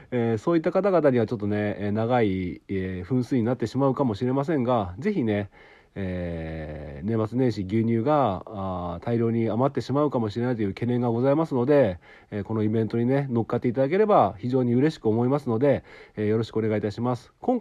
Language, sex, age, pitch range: Japanese, male, 40-59, 105-135 Hz